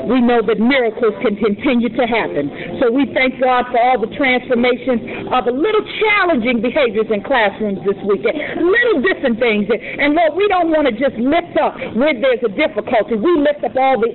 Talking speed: 195 wpm